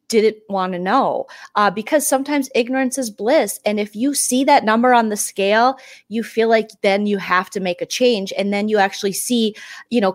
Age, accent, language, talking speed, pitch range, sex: 30-49, American, English, 205 wpm, 195-260 Hz, female